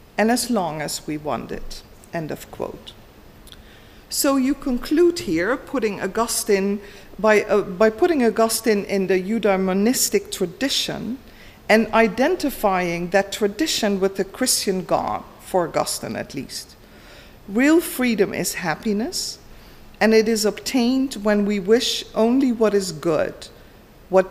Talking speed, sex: 130 wpm, female